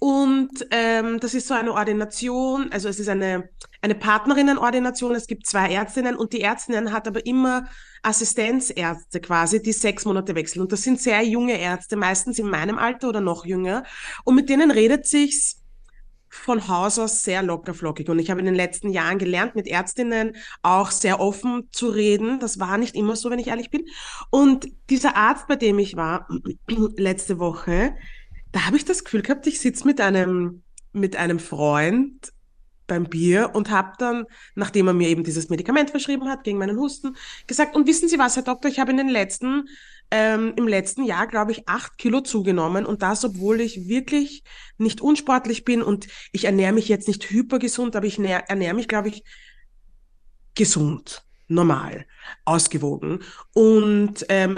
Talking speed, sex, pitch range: 175 wpm, female, 190-250 Hz